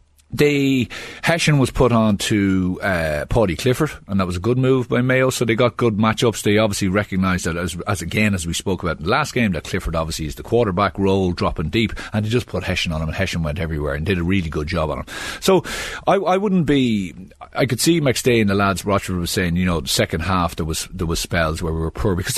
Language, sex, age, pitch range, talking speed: English, male, 40-59, 90-125 Hz, 255 wpm